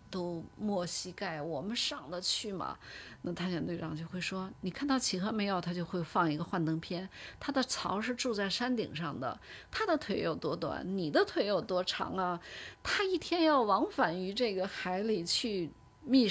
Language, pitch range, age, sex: Chinese, 170-230 Hz, 30-49, female